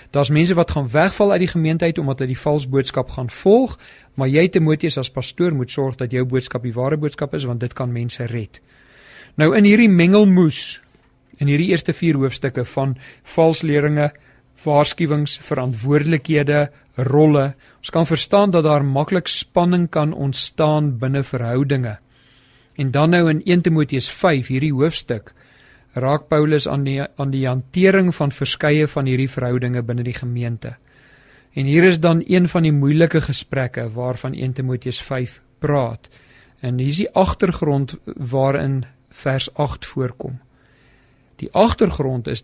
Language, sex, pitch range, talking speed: English, male, 130-155 Hz, 155 wpm